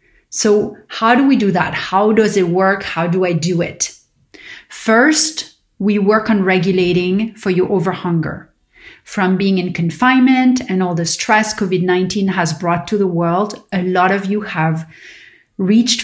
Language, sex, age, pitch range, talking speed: English, female, 30-49, 180-220 Hz, 160 wpm